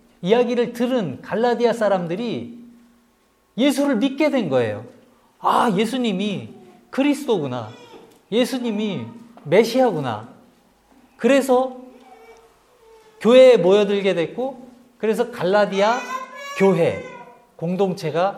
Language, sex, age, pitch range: Korean, male, 40-59, 200-255 Hz